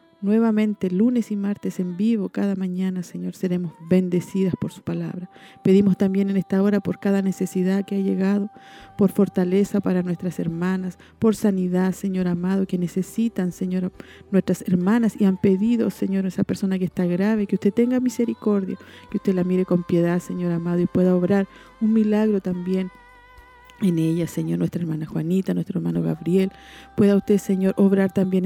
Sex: female